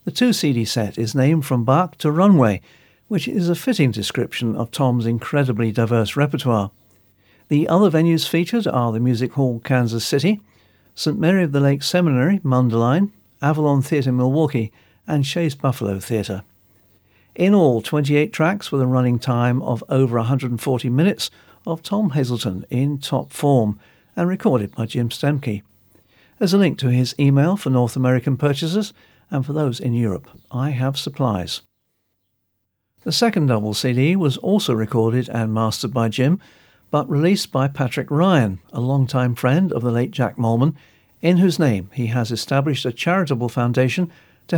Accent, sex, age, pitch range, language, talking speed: British, male, 50-69, 115-155 Hz, English, 160 wpm